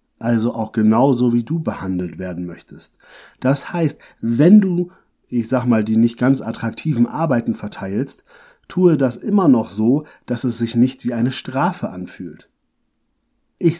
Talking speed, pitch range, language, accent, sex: 150 wpm, 120-160 Hz, German, German, male